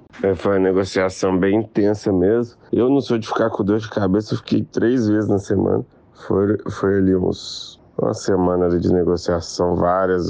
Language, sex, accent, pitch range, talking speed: Portuguese, male, Brazilian, 90-105 Hz, 185 wpm